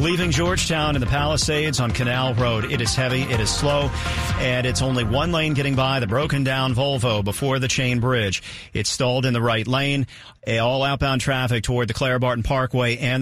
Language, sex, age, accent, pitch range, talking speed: English, male, 40-59, American, 115-140 Hz, 200 wpm